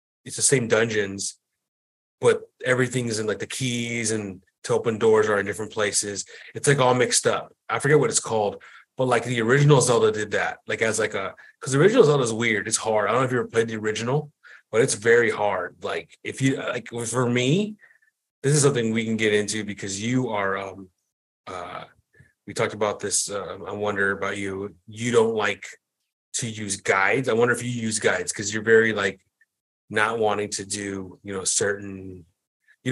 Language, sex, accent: English, male, American